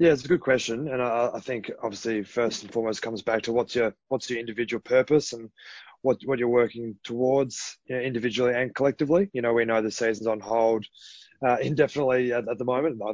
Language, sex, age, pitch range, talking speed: English, male, 20-39, 110-120 Hz, 220 wpm